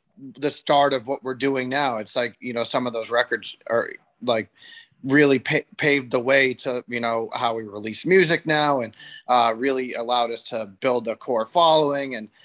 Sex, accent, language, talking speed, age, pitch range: male, American, English, 195 wpm, 20-39, 115-130 Hz